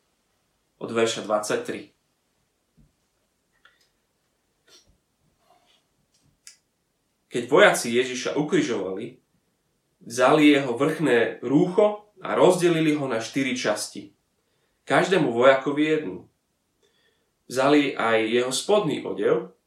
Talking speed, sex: 75 wpm, male